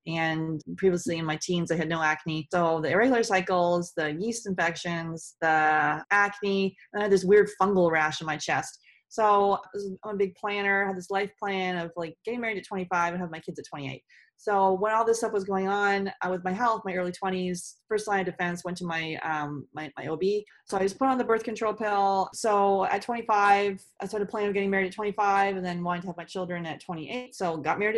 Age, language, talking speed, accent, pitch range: 30-49, English, 235 wpm, American, 175-200 Hz